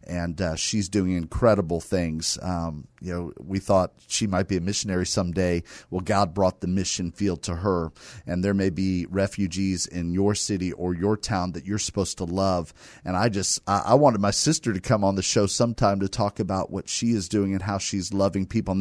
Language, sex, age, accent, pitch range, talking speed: English, male, 40-59, American, 100-125 Hz, 215 wpm